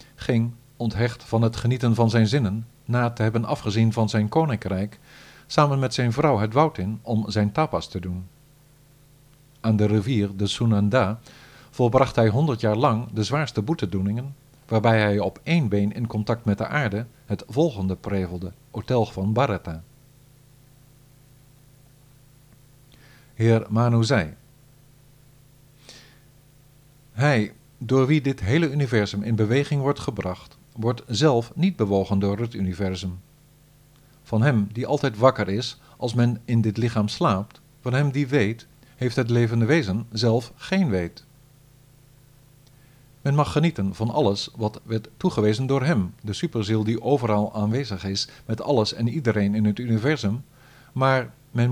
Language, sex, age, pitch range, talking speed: Dutch, male, 50-69, 110-140 Hz, 145 wpm